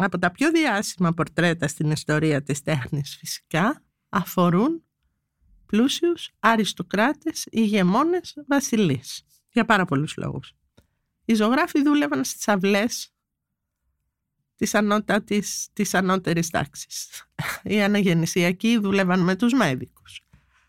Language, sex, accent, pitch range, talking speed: Greek, female, native, 165-220 Hz, 100 wpm